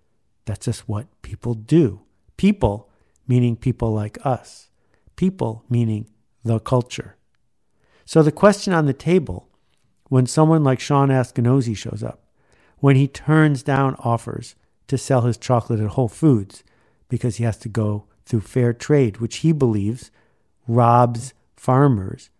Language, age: English, 50-69